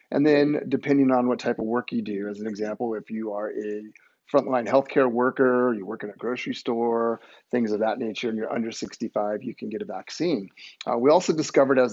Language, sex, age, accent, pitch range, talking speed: English, male, 30-49, American, 110-130 Hz, 220 wpm